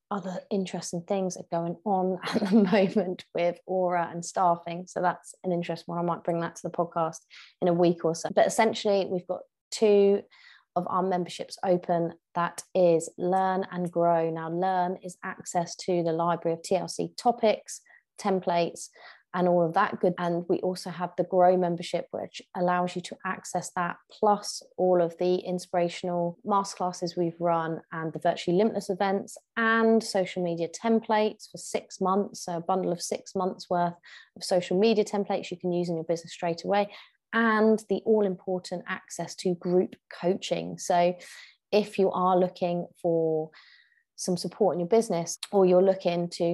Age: 20-39